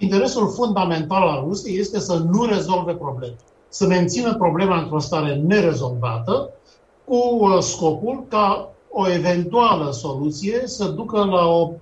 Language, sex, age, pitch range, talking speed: Romanian, male, 60-79, 145-195 Hz, 125 wpm